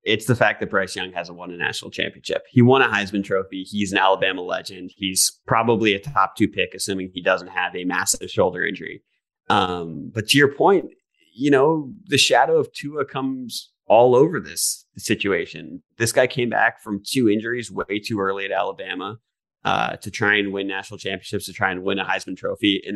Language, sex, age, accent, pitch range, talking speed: English, male, 30-49, American, 95-110 Hz, 200 wpm